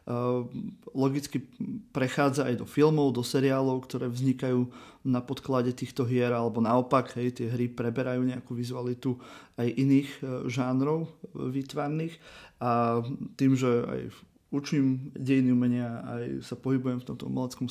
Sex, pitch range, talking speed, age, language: male, 120-135 Hz, 135 wpm, 30-49, Slovak